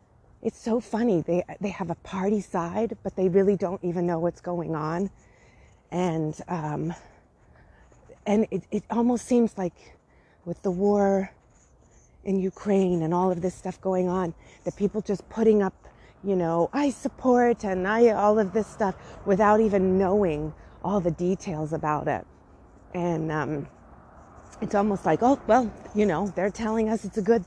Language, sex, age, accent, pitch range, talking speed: English, female, 30-49, American, 170-225 Hz, 165 wpm